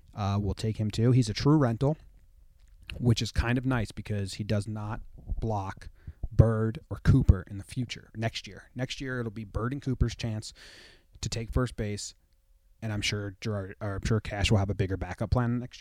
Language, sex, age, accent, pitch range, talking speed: English, male, 30-49, American, 95-120 Hz, 205 wpm